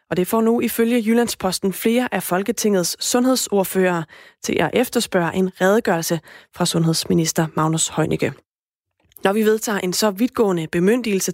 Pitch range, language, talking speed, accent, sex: 175-220 Hz, Danish, 140 wpm, native, female